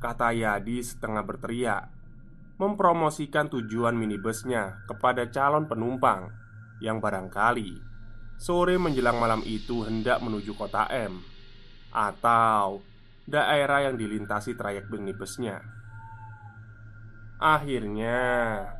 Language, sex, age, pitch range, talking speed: Indonesian, male, 20-39, 110-135 Hz, 85 wpm